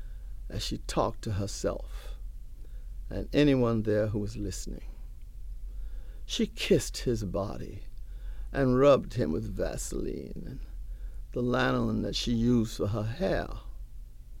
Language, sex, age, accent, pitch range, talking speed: English, male, 60-79, American, 80-125 Hz, 120 wpm